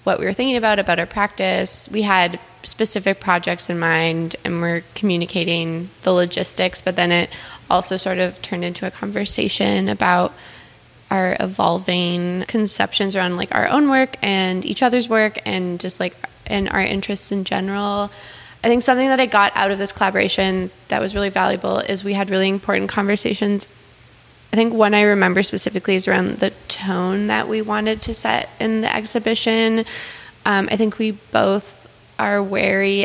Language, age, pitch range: English, 10-29, 185-215 Hz